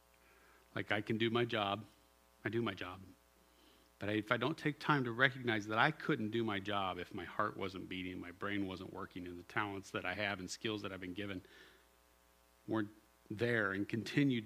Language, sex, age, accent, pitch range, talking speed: English, male, 40-59, American, 95-145 Hz, 205 wpm